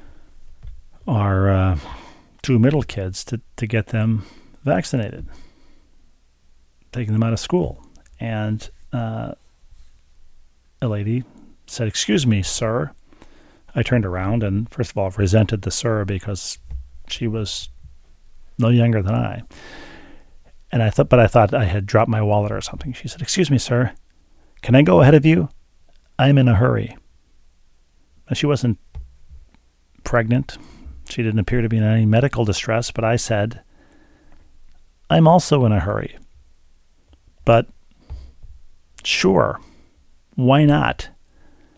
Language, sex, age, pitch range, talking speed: English, male, 40-59, 75-120 Hz, 135 wpm